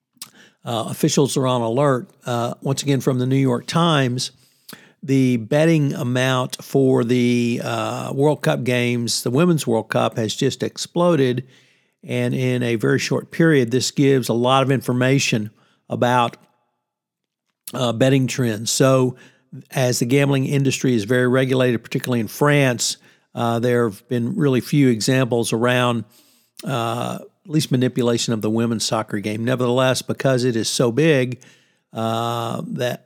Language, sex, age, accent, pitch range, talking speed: English, male, 60-79, American, 120-145 Hz, 145 wpm